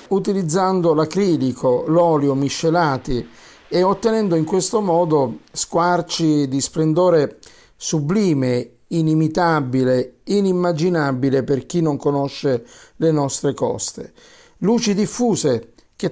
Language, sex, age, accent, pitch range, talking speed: Italian, male, 50-69, native, 150-185 Hz, 95 wpm